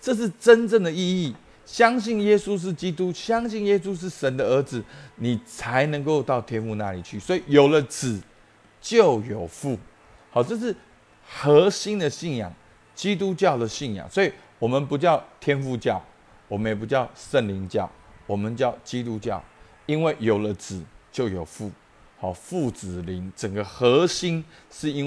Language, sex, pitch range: Chinese, male, 105-155 Hz